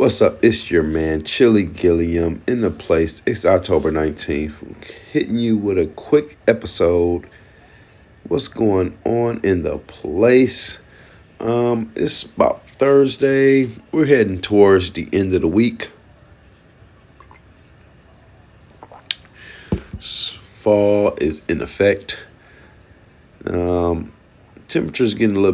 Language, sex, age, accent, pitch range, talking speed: English, male, 40-59, American, 90-110 Hz, 110 wpm